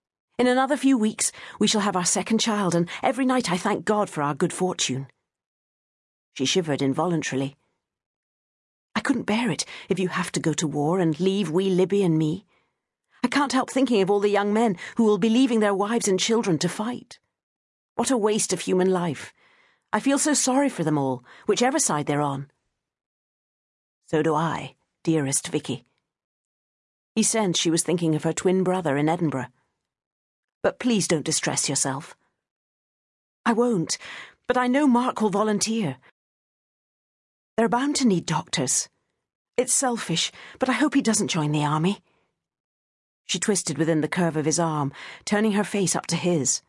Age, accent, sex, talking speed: 40-59, British, female, 170 wpm